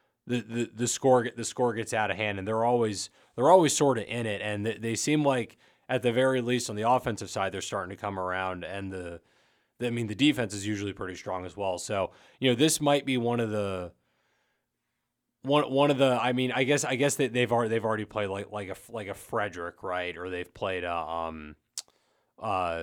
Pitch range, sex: 95-120 Hz, male